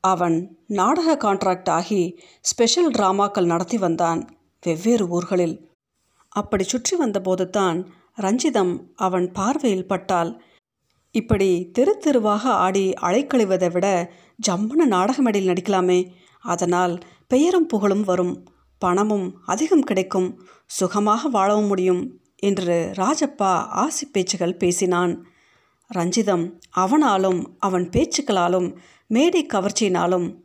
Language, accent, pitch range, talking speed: Tamil, native, 180-225 Hz, 90 wpm